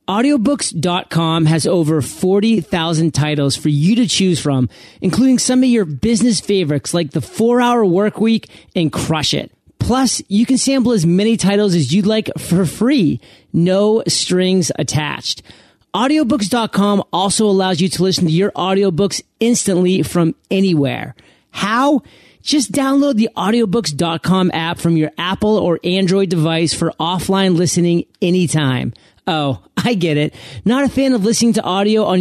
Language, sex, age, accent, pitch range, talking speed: English, male, 30-49, American, 165-225 Hz, 145 wpm